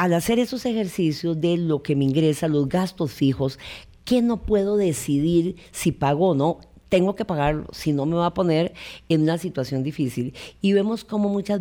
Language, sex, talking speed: Spanish, female, 190 wpm